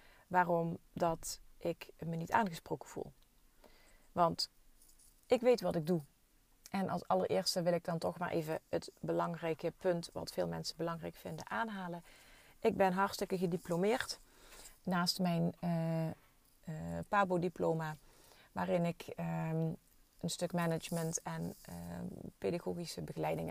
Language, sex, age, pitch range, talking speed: Dutch, female, 30-49, 160-190 Hz, 130 wpm